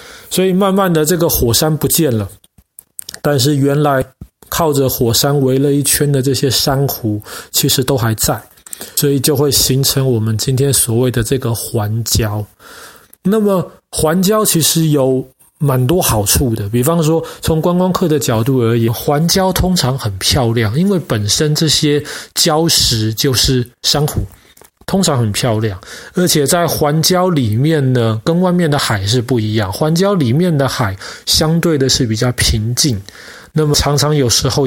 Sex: male